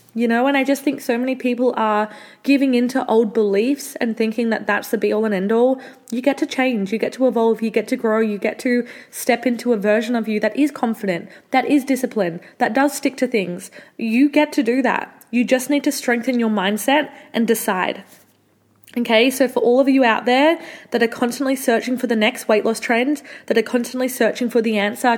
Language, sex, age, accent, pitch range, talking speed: English, female, 20-39, Australian, 225-260 Hz, 225 wpm